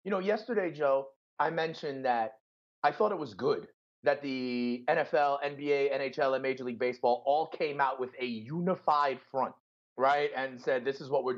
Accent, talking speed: American, 185 wpm